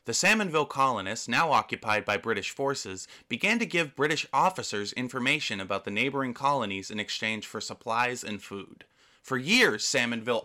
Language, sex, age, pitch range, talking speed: English, male, 30-49, 110-175 Hz, 155 wpm